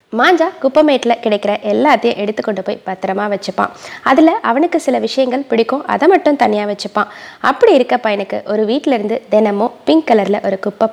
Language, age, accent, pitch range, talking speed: Tamil, 20-39, native, 200-265 Hz, 155 wpm